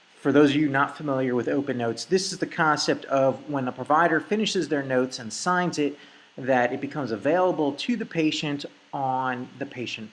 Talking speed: 195 wpm